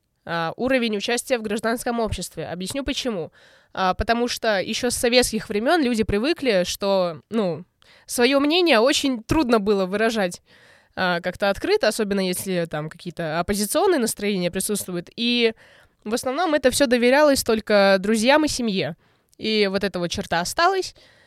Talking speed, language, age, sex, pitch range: 145 wpm, Russian, 20-39, female, 185-240 Hz